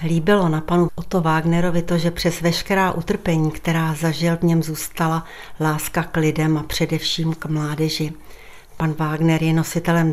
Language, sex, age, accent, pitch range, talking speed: Czech, female, 60-79, native, 155-170 Hz, 155 wpm